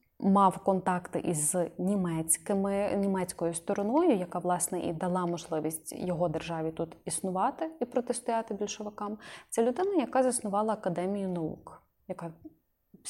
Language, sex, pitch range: Ukrainian, female, 180-215 Hz